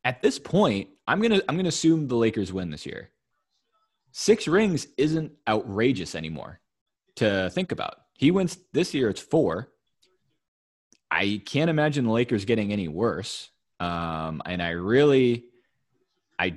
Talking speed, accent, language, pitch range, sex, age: 150 wpm, American, English, 95-125 Hz, male, 20-39